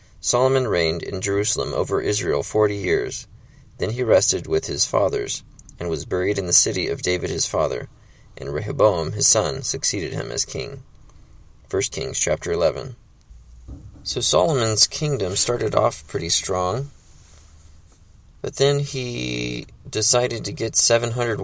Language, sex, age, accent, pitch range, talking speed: English, male, 20-39, American, 80-115 Hz, 140 wpm